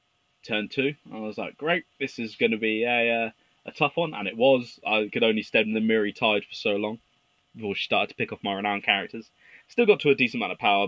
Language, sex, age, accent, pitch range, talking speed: English, male, 20-39, British, 105-155 Hz, 260 wpm